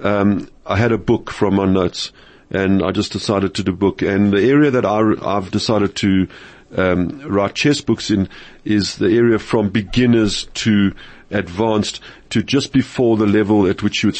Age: 50-69